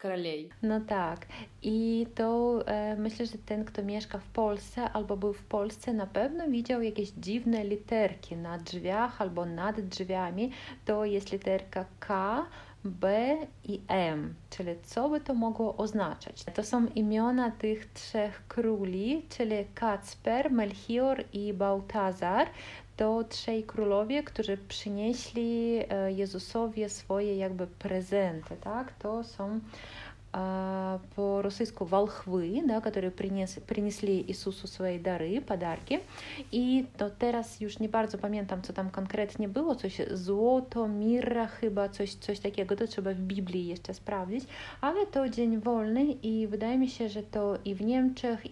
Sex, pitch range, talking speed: female, 195-230 Hz, 135 wpm